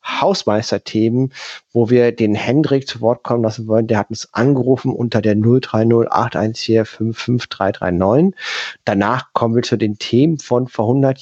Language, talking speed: German, 140 wpm